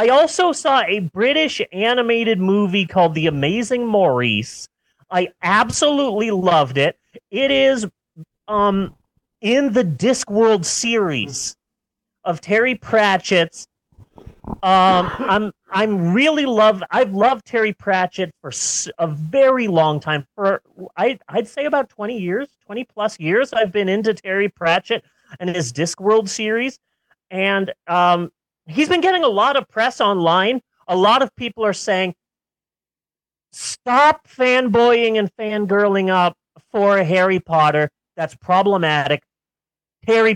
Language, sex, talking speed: English, male, 125 wpm